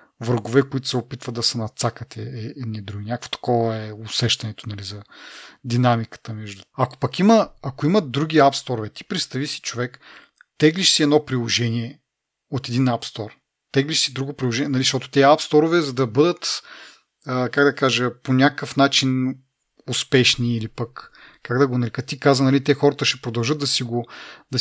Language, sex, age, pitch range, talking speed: Bulgarian, male, 30-49, 120-145 Hz, 170 wpm